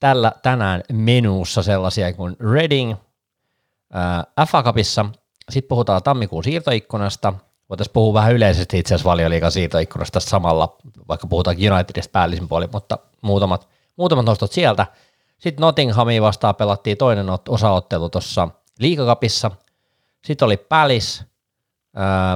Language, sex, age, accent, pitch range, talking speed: Finnish, male, 30-49, native, 90-120 Hz, 105 wpm